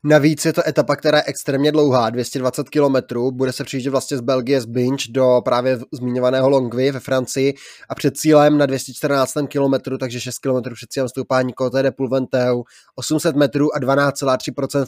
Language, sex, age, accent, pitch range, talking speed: Czech, male, 20-39, native, 130-150 Hz, 175 wpm